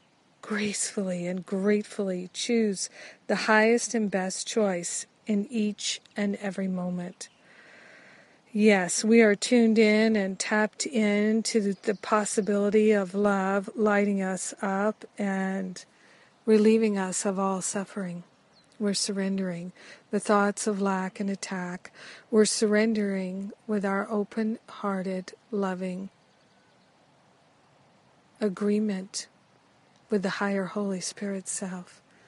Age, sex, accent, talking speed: 50-69, female, American, 105 wpm